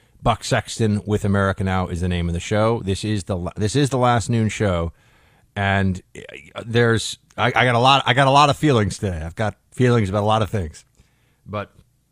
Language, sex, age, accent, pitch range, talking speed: English, male, 30-49, American, 100-125 Hz, 215 wpm